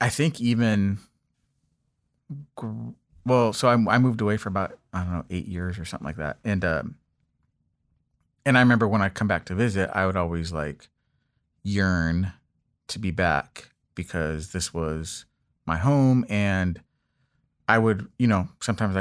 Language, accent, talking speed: English, American, 160 wpm